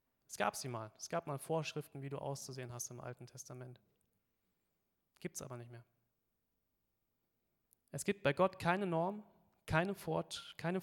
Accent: German